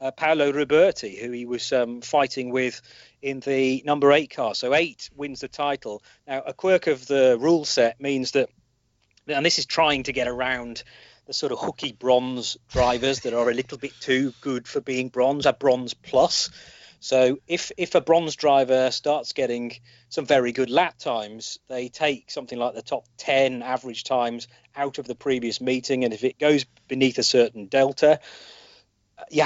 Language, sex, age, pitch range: English, male, 40-59, 120-140 Hz